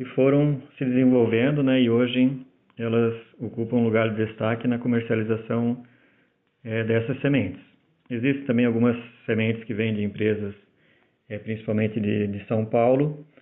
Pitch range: 110-125 Hz